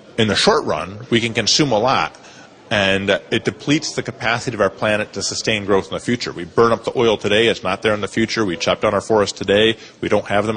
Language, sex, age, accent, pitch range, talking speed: English, male, 30-49, American, 110-130 Hz, 255 wpm